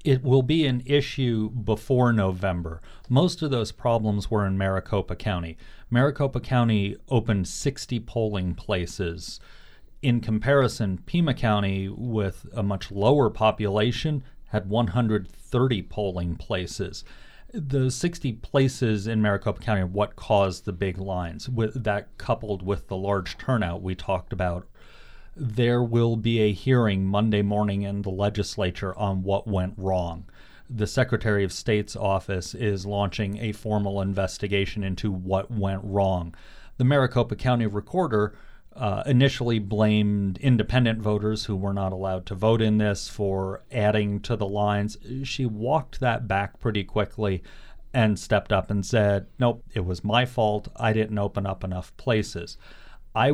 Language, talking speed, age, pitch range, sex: English, 145 wpm, 40-59, 95-120 Hz, male